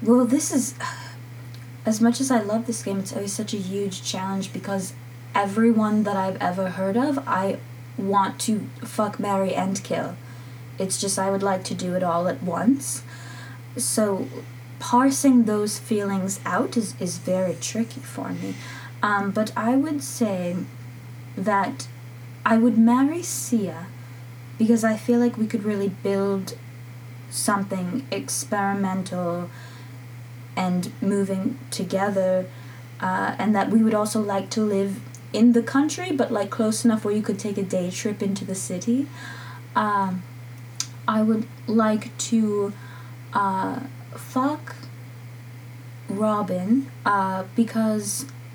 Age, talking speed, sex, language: 20-39, 135 wpm, female, English